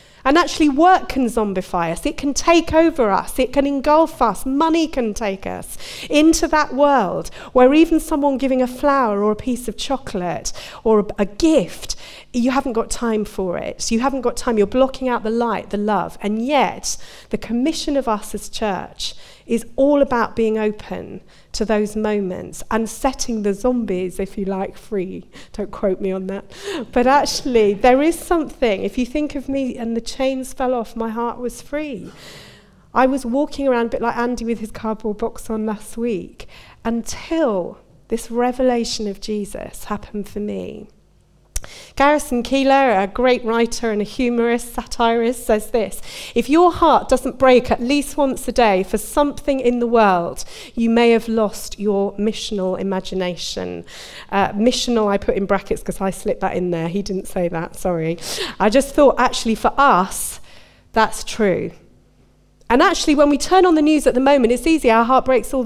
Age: 40-59